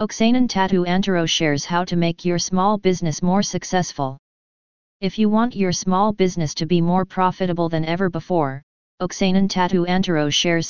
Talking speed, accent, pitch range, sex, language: 165 wpm, American, 165-190 Hz, female, English